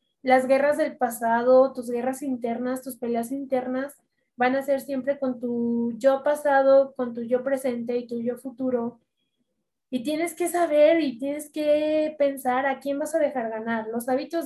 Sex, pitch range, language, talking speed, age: female, 250-295 Hz, Spanish, 175 wpm, 20-39